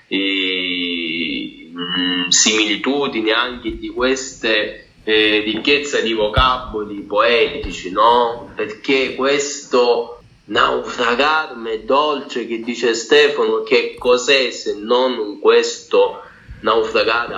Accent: native